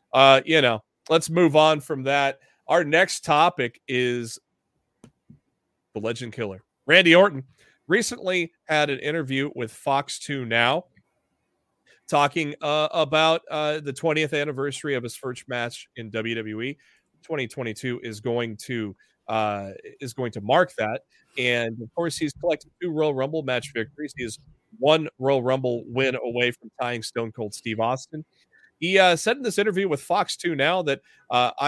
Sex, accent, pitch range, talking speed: male, American, 120-150 Hz, 155 wpm